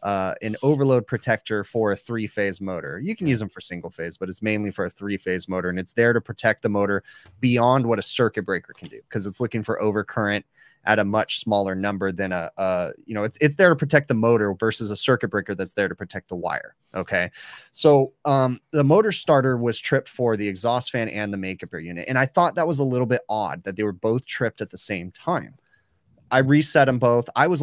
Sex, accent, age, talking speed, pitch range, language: male, American, 30-49, 240 wpm, 100-125 Hz, English